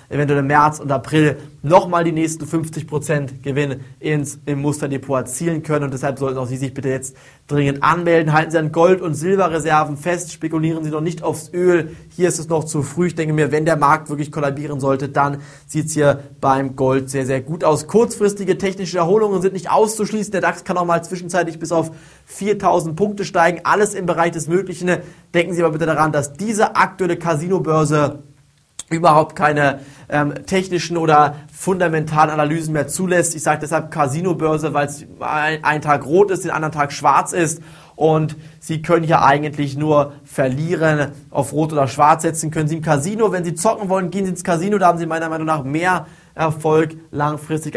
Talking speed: 190 wpm